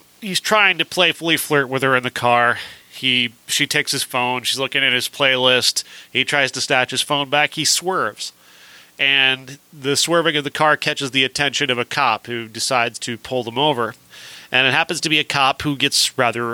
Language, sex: English, male